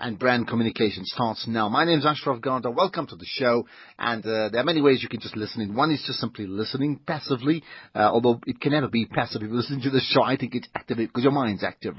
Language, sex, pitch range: English, male, 110-140 Hz